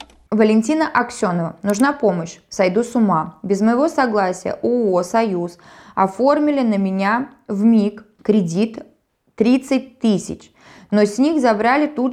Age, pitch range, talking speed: 20-39, 185-235 Hz, 125 wpm